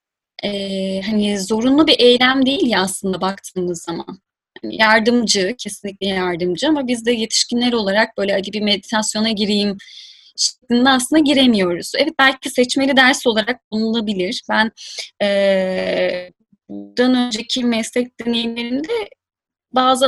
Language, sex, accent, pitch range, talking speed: Turkish, female, native, 195-270 Hz, 120 wpm